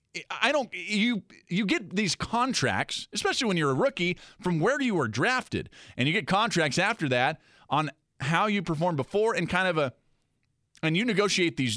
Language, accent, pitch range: English, American, 125-180 Hz